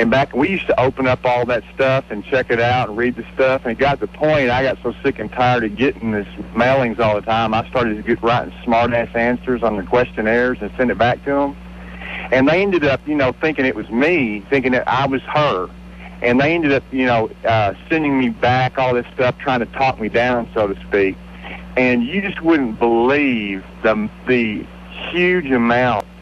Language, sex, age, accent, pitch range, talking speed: English, male, 40-59, American, 110-130 Hz, 225 wpm